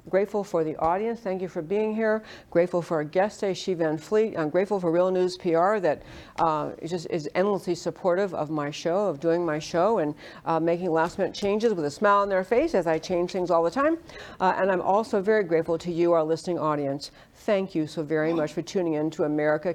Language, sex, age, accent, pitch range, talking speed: English, female, 60-79, American, 160-190 Hz, 225 wpm